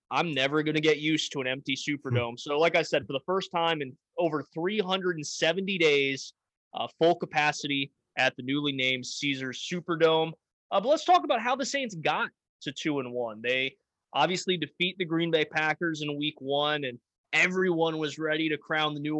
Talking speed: 195 wpm